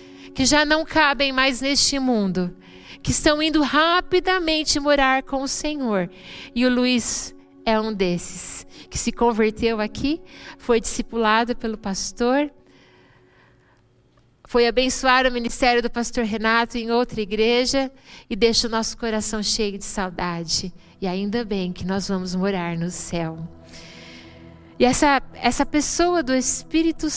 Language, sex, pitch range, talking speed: Portuguese, female, 225-295 Hz, 135 wpm